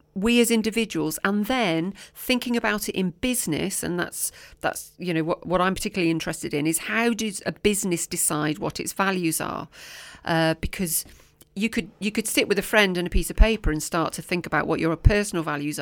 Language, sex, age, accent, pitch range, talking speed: English, female, 40-59, British, 160-200 Hz, 210 wpm